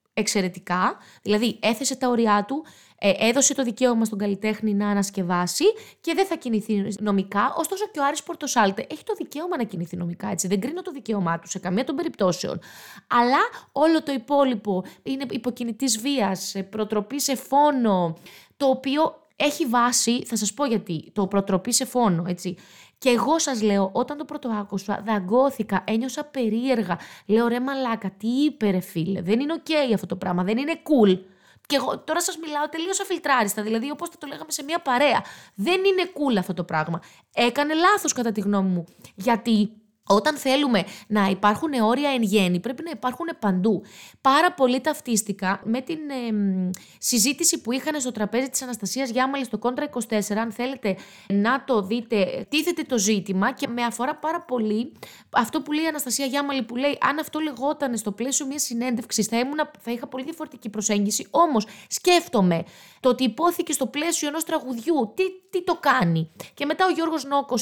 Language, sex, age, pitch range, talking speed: Greek, female, 20-39, 205-290 Hz, 175 wpm